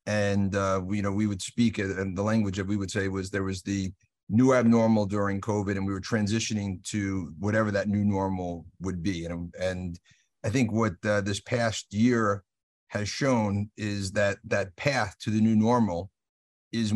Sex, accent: male, American